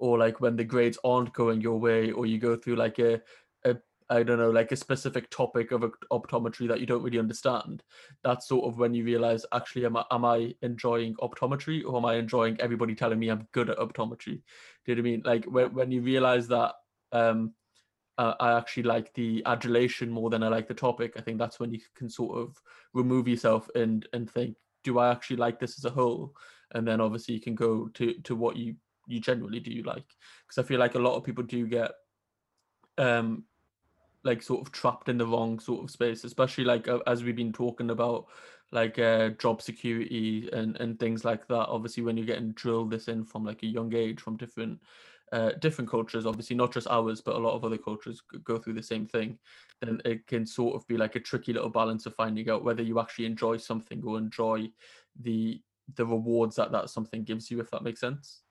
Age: 20-39